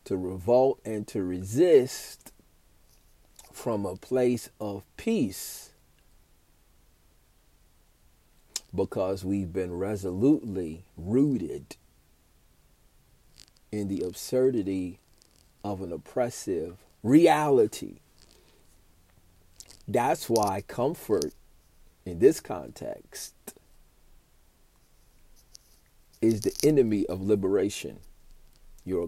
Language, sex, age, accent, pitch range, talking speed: English, male, 40-59, American, 85-110 Hz, 70 wpm